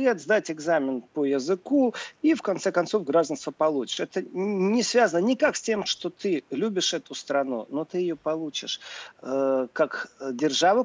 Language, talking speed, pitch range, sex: Russian, 155 wpm, 150-220 Hz, male